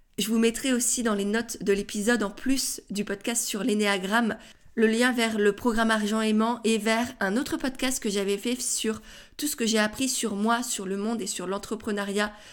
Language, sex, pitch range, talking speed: French, female, 205-245 Hz, 210 wpm